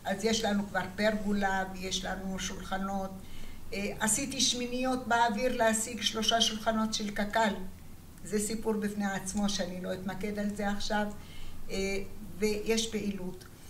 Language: Hebrew